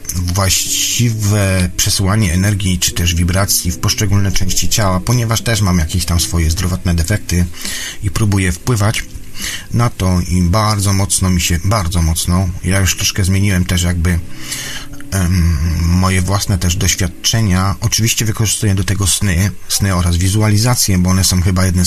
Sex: male